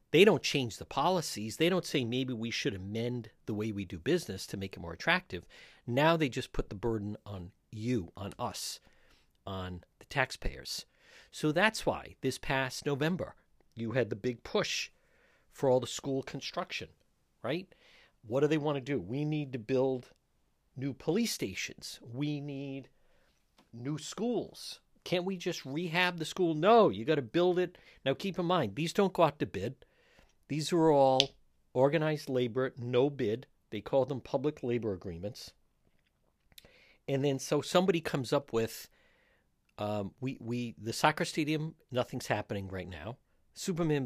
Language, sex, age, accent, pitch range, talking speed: English, male, 50-69, American, 115-155 Hz, 165 wpm